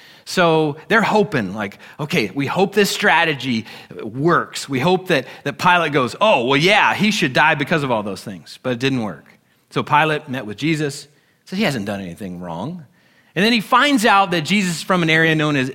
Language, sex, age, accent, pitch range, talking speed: English, male, 30-49, American, 145-195 Hz, 215 wpm